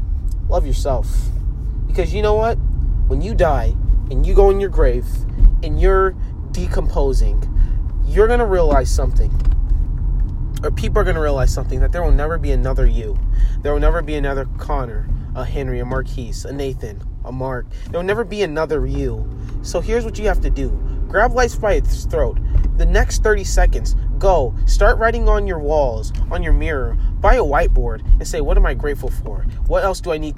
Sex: male